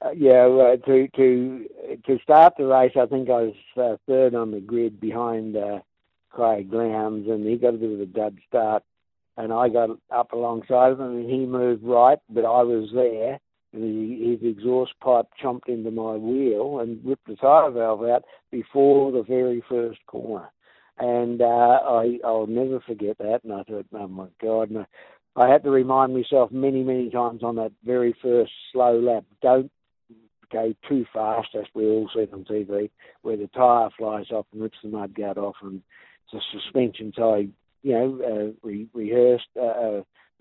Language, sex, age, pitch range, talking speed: English, male, 60-79, 110-125 Hz, 185 wpm